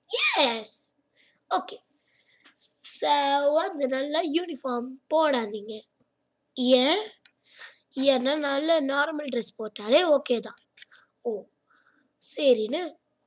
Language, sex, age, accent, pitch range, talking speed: Tamil, female, 20-39, native, 240-300 Hz, 95 wpm